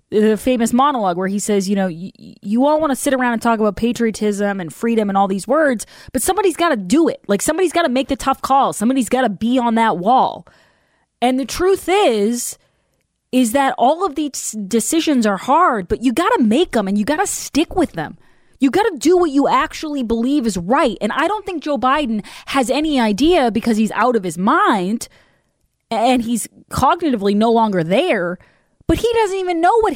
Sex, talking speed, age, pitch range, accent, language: female, 215 wpm, 20-39, 215-320 Hz, American, English